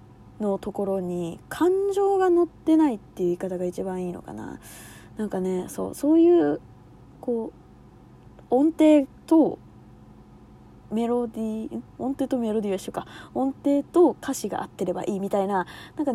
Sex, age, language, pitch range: female, 20-39, Japanese, 185-305 Hz